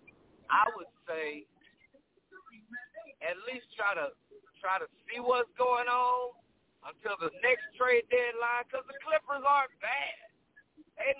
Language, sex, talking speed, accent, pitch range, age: English, male, 130 wpm, American, 225-320 Hz, 50-69